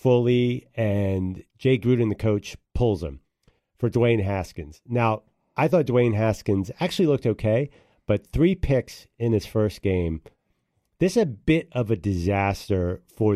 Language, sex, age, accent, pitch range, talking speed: English, male, 40-59, American, 95-120 Hz, 155 wpm